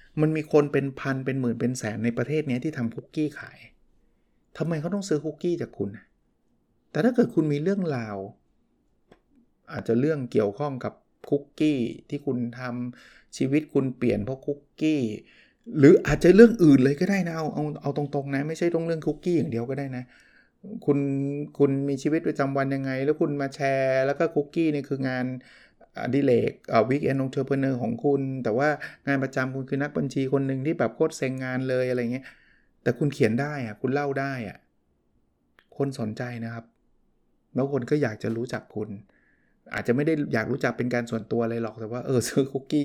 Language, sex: Thai, male